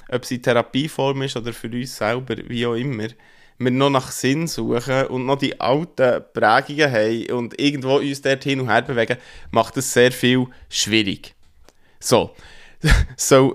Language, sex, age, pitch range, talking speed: German, male, 20-39, 115-140 Hz, 165 wpm